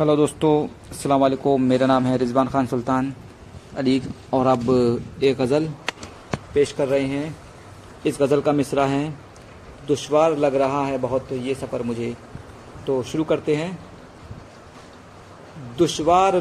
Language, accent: Hindi, native